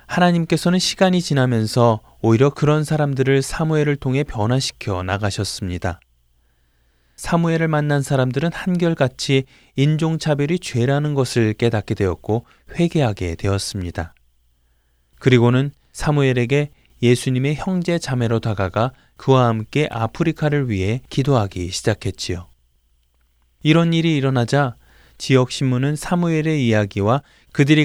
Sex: male